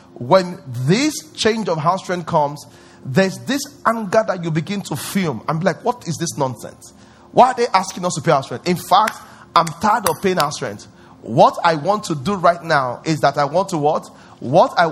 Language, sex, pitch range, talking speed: English, male, 155-210 Hz, 215 wpm